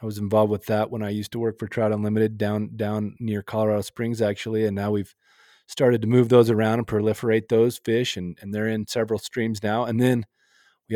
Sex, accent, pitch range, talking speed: male, American, 105-120 Hz, 225 wpm